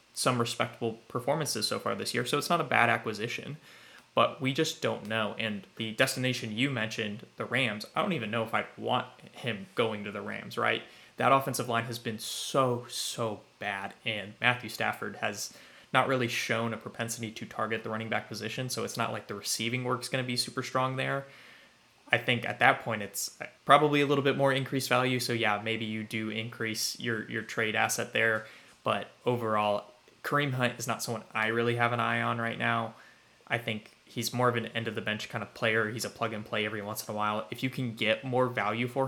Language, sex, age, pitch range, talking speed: English, male, 20-39, 110-125 Hz, 215 wpm